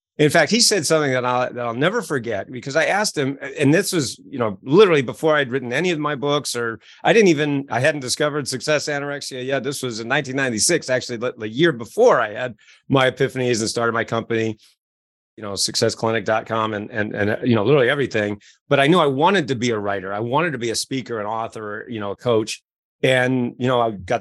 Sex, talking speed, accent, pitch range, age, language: male, 215 wpm, American, 115-150 Hz, 30-49, English